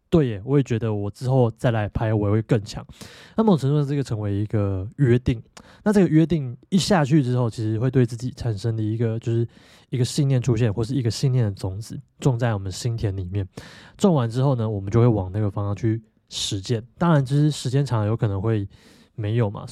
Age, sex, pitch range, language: 20-39, male, 110-135 Hz, Chinese